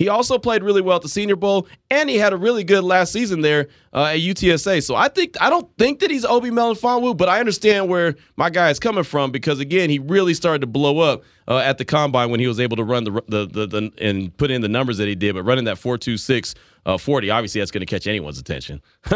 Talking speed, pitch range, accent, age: 265 wpm, 100-140 Hz, American, 30-49